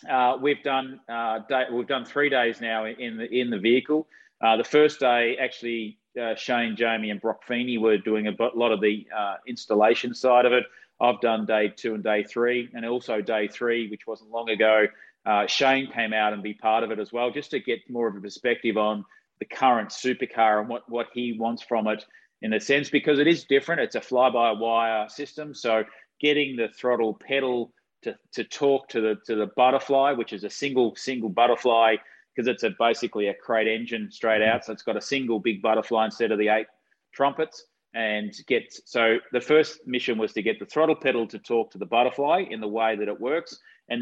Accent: Australian